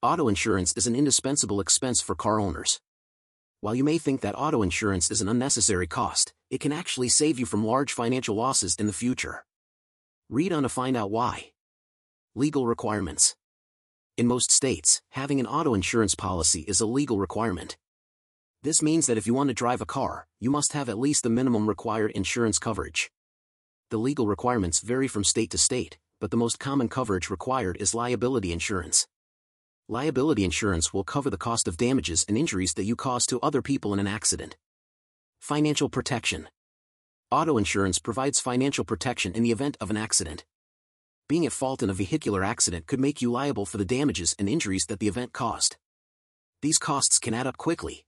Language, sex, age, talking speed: English, male, 40-59, 185 wpm